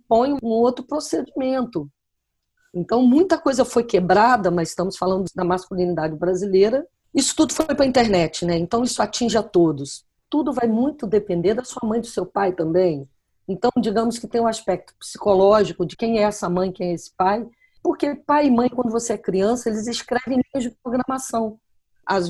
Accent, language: Brazilian, Portuguese